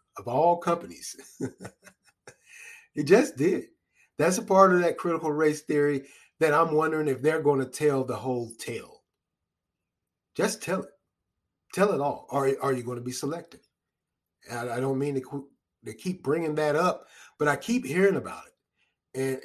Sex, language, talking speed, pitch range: male, English, 165 wpm, 125-165 Hz